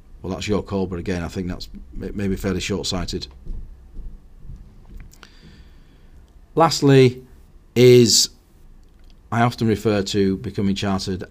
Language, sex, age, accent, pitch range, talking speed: English, male, 40-59, British, 85-105 Hz, 105 wpm